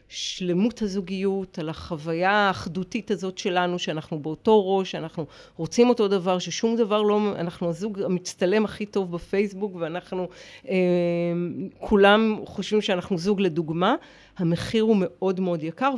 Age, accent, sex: 50-69, native, female